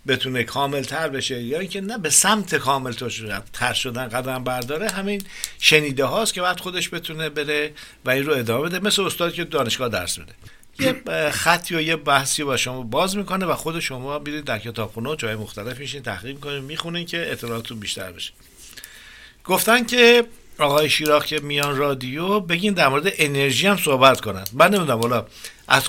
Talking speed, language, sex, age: 180 wpm, Persian, male, 60-79